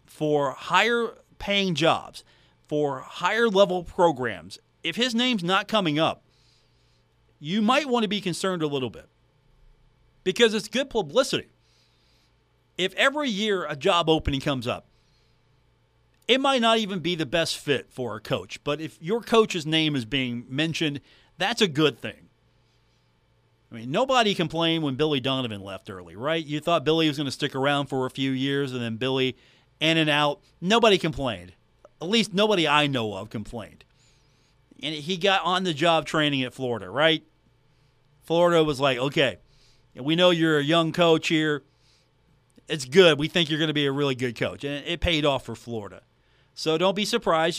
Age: 40-59